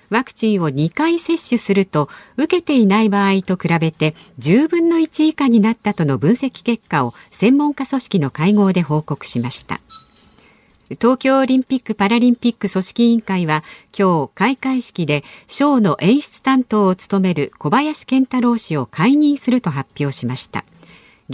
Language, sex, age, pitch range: Japanese, female, 50-69, 160-250 Hz